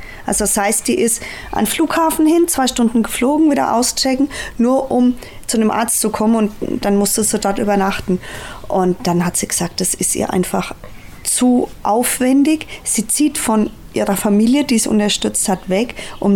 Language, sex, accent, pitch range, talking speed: German, female, German, 200-240 Hz, 180 wpm